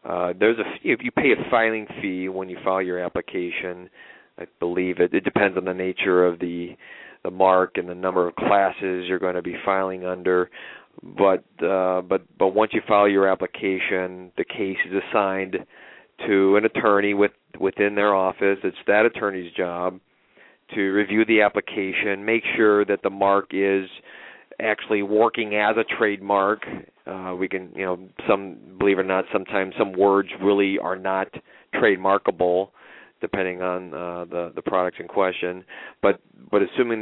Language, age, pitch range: English, 40-59, 90-100 Hz